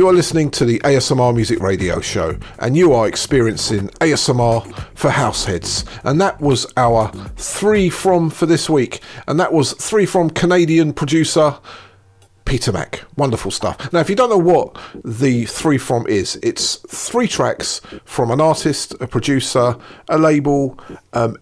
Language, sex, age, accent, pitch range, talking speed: English, male, 40-59, British, 115-155 Hz, 160 wpm